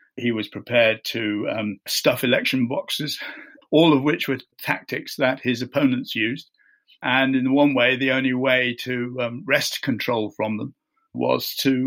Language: English